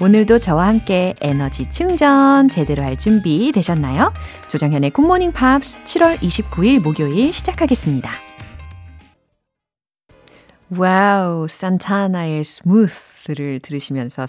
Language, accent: Korean, native